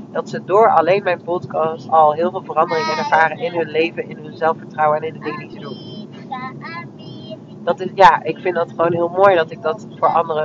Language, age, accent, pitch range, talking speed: Dutch, 40-59, Dutch, 160-180 Hz, 205 wpm